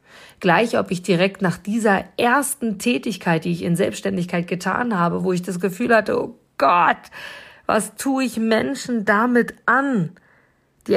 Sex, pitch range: female, 170-210 Hz